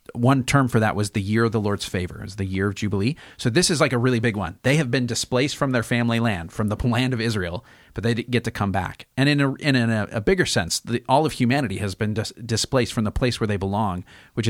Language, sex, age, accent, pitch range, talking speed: English, male, 40-59, American, 105-130 Hz, 260 wpm